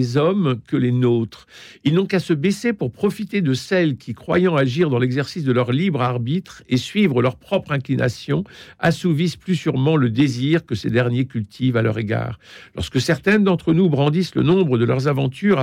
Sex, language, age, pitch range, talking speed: male, French, 60-79, 125-160 Hz, 190 wpm